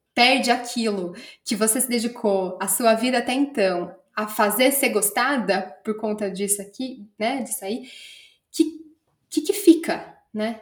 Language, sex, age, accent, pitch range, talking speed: Portuguese, female, 10-29, Brazilian, 200-250 Hz, 155 wpm